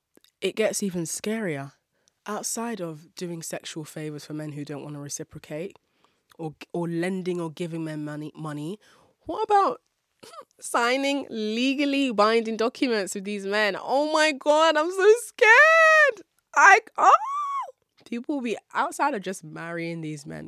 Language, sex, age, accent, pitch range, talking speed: English, female, 20-39, British, 155-220 Hz, 145 wpm